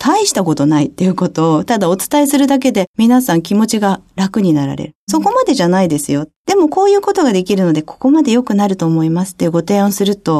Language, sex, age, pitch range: Japanese, female, 40-59, 170-245 Hz